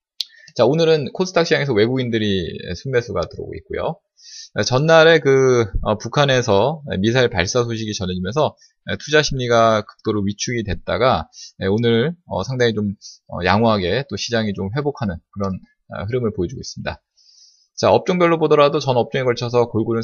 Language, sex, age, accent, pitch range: Korean, male, 20-39, native, 105-155 Hz